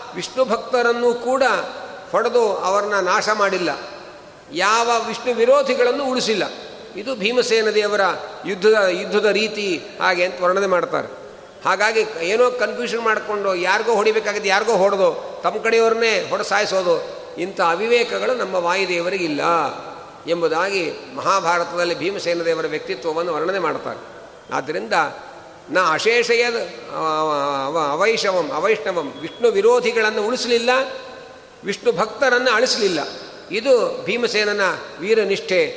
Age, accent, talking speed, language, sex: 50-69, native, 90 wpm, Kannada, male